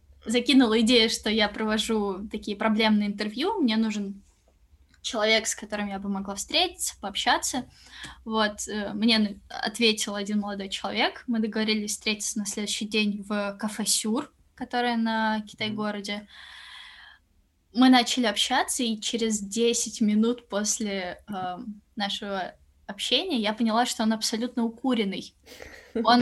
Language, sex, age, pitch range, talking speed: Russian, female, 10-29, 205-240 Hz, 120 wpm